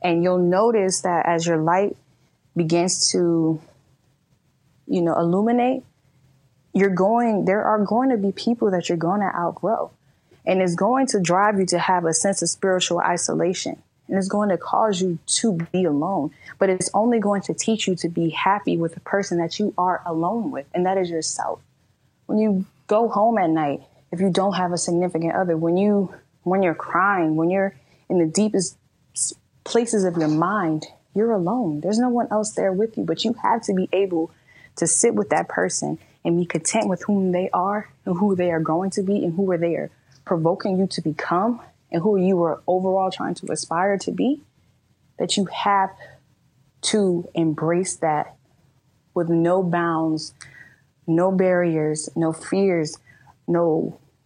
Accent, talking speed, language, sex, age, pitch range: American, 180 wpm, English, female, 20-39, 165-200 Hz